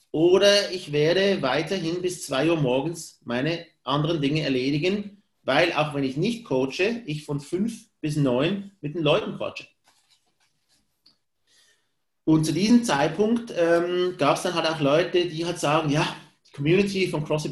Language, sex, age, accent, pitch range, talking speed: German, male, 30-49, German, 145-185 Hz, 160 wpm